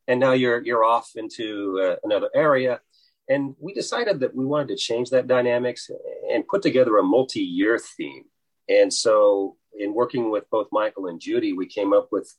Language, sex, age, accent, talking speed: English, male, 40-59, American, 185 wpm